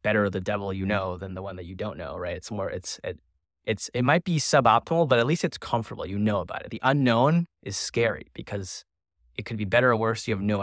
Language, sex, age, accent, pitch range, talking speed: English, male, 20-39, American, 100-125 Hz, 255 wpm